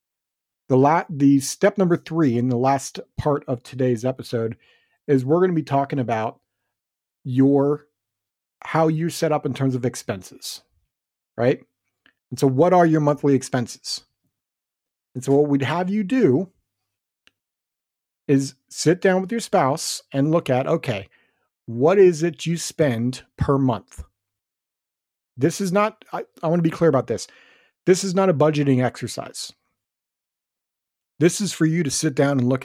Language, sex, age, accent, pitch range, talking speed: English, male, 40-59, American, 120-155 Hz, 160 wpm